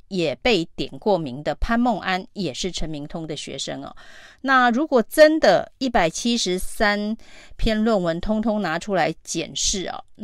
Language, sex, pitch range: Chinese, female, 180-230 Hz